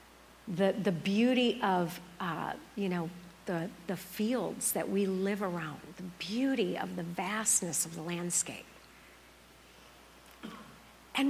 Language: English